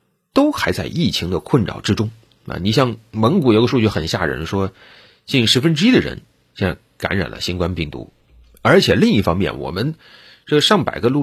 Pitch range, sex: 95-145 Hz, male